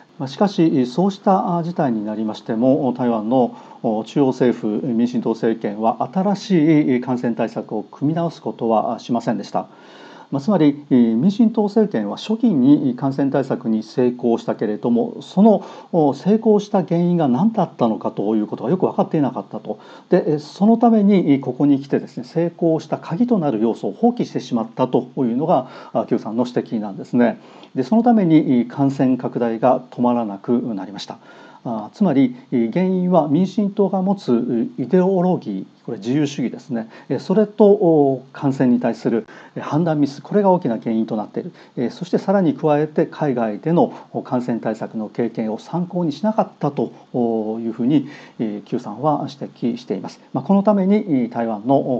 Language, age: Japanese, 40-59